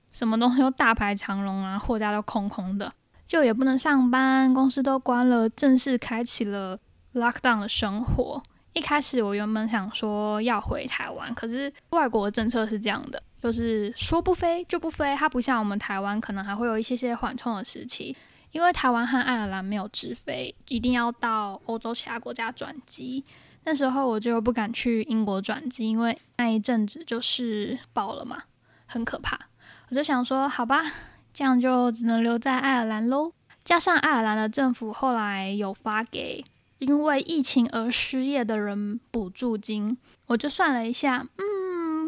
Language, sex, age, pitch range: Chinese, female, 10-29, 220-275 Hz